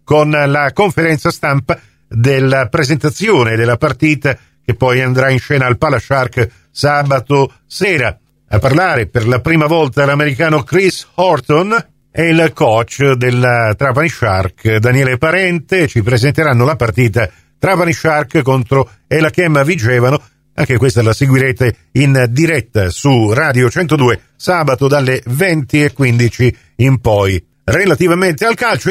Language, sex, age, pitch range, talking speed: Italian, male, 50-69, 125-175 Hz, 125 wpm